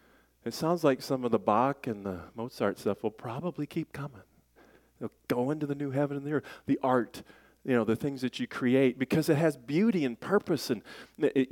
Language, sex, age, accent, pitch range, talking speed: English, male, 40-59, American, 95-150 Hz, 215 wpm